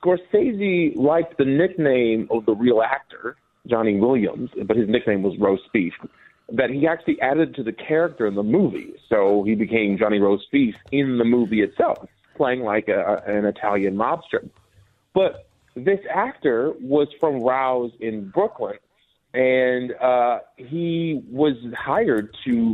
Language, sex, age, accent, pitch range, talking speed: English, male, 40-59, American, 110-160 Hz, 145 wpm